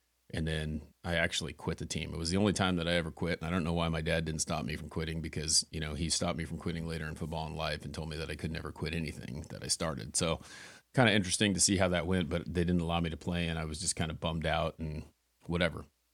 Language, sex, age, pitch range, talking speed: English, male, 30-49, 75-90 Hz, 295 wpm